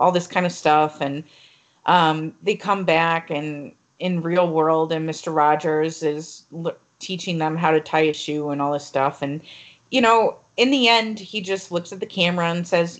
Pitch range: 165-225 Hz